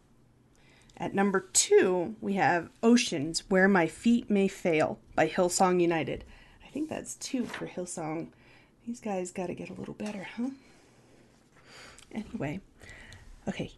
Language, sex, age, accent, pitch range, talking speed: English, female, 30-49, American, 185-280 Hz, 135 wpm